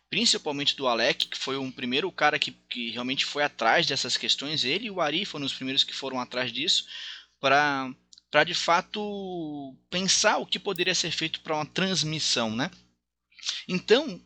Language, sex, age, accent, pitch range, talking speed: Portuguese, male, 20-39, Brazilian, 130-190 Hz, 170 wpm